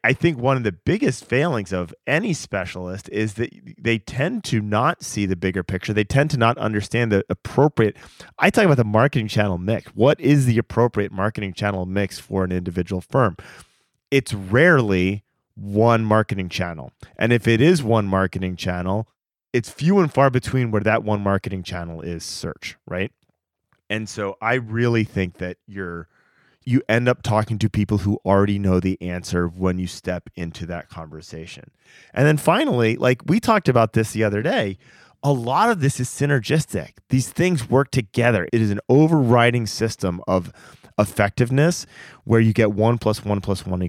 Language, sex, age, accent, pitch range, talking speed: English, male, 30-49, American, 95-125 Hz, 180 wpm